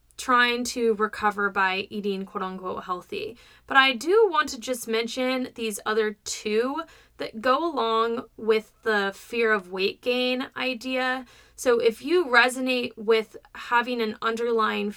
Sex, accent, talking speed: female, American, 140 wpm